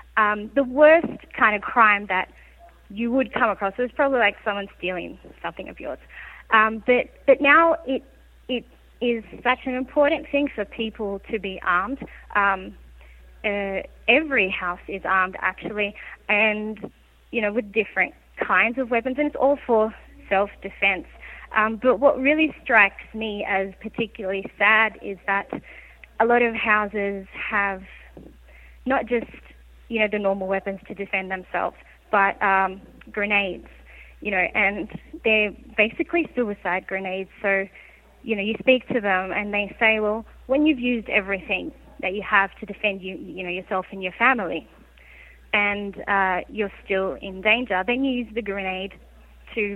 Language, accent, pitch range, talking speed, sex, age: English, Australian, 195-240 Hz, 155 wpm, female, 30-49